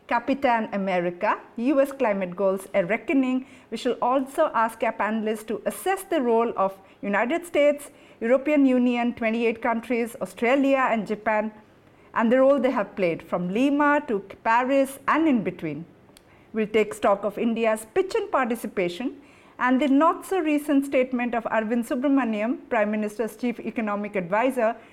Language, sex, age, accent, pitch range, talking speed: English, female, 50-69, Indian, 215-290 Hz, 145 wpm